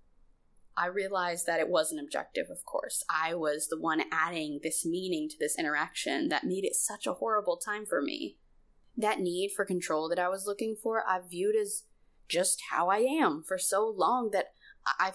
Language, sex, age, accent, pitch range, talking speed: English, female, 20-39, American, 155-215 Hz, 195 wpm